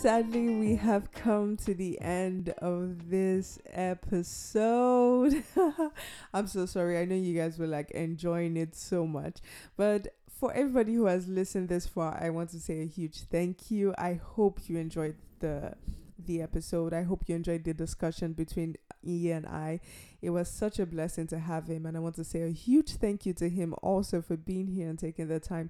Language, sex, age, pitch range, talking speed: English, female, 20-39, 165-190 Hz, 195 wpm